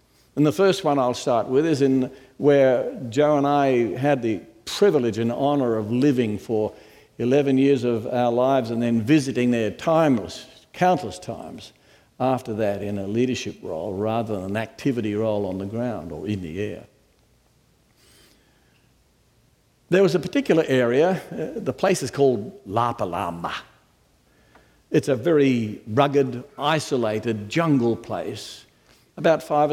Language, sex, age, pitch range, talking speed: English, male, 60-79, 110-145 Hz, 145 wpm